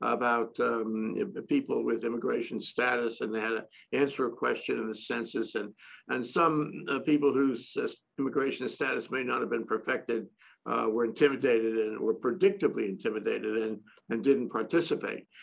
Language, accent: English, American